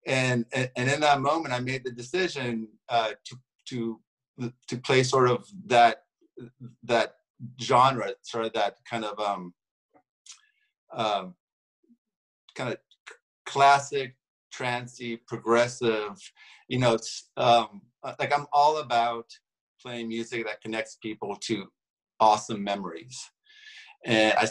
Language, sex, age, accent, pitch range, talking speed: English, male, 50-69, American, 115-135 Hz, 120 wpm